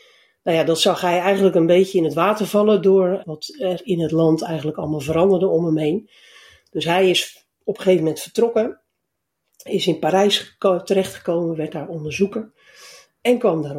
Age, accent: 60-79, Dutch